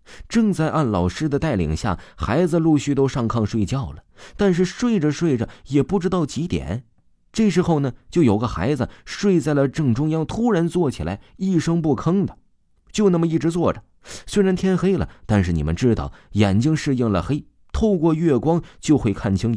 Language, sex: Chinese, male